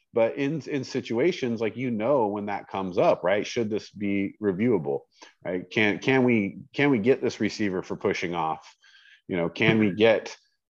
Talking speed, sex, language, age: 185 wpm, male, English, 40-59